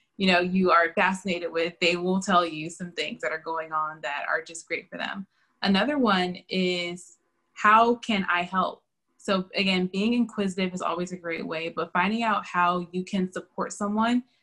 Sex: female